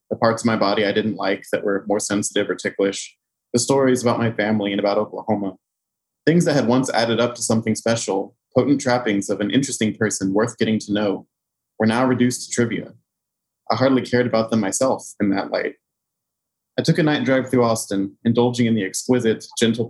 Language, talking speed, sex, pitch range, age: English, 200 wpm, male, 105-125 Hz, 30-49